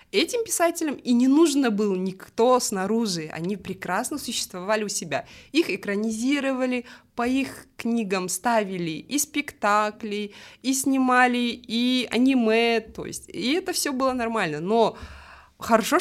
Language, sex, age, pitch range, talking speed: Russian, female, 20-39, 190-245 Hz, 125 wpm